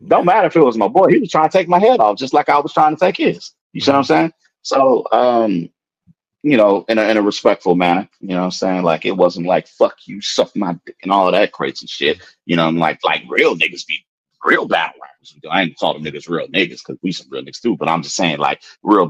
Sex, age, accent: male, 30-49, American